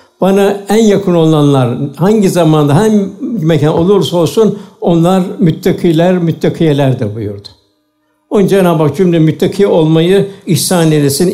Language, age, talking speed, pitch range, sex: Turkish, 60-79, 110 wpm, 155-195 Hz, male